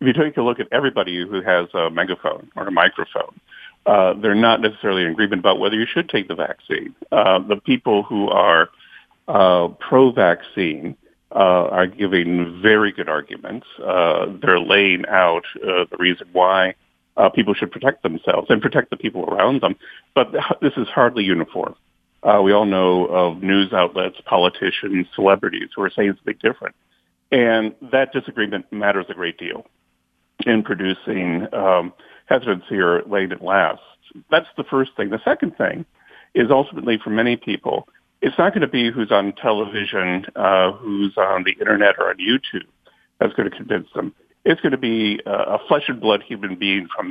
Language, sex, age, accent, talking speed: English, male, 50-69, American, 170 wpm